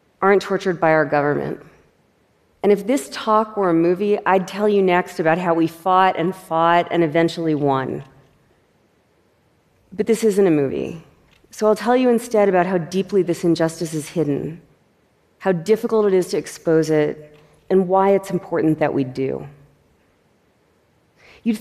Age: 40-59